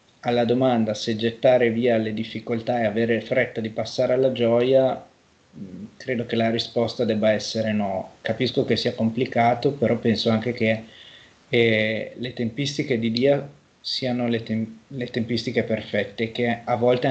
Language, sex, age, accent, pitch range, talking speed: Italian, male, 30-49, native, 110-125 Hz, 150 wpm